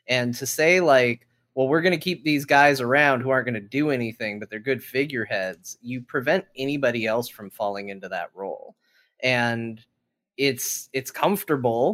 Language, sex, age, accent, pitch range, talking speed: English, male, 20-39, American, 120-145 Hz, 175 wpm